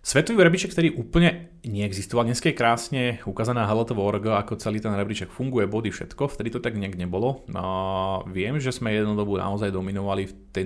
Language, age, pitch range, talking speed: Slovak, 30-49, 95-115 Hz, 180 wpm